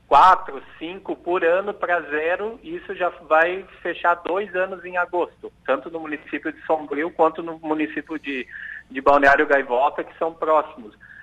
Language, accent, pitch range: Portuguese, Brazilian, 140-180 Hz